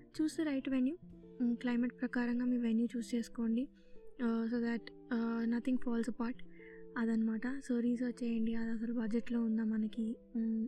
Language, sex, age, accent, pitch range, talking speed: Telugu, female, 20-39, native, 225-250 Hz, 165 wpm